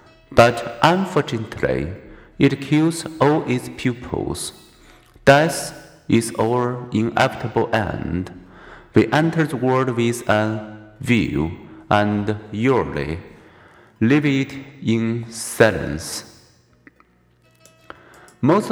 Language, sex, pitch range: Chinese, male, 110-135 Hz